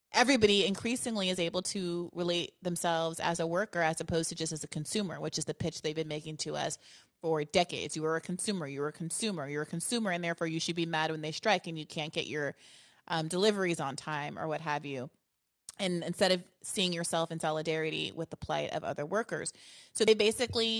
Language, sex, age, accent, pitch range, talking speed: English, female, 30-49, American, 160-195 Hz, 220 wpm